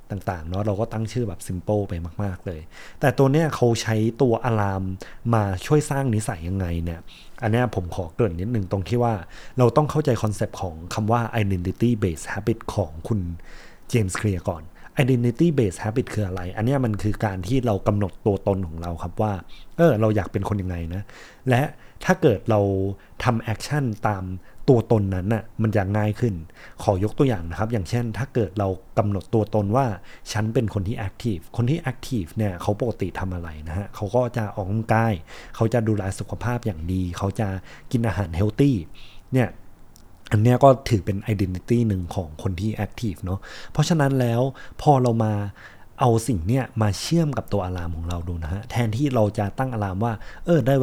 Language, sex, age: Thai, male, 20-39